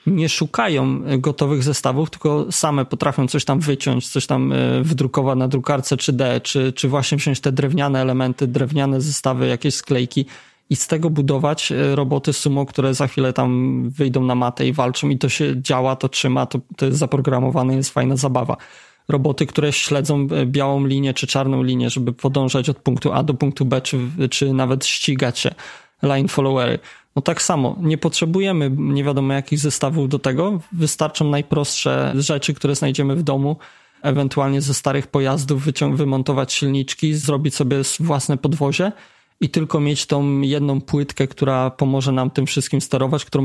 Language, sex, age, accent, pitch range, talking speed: Polish, male, 20-39, native, 135-150 Hz, 165 wpm